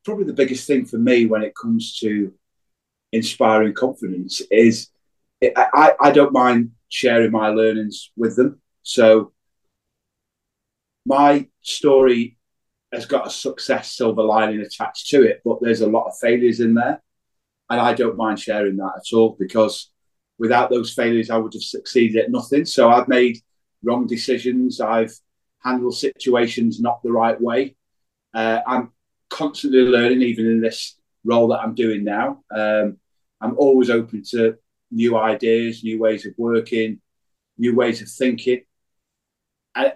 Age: 30-49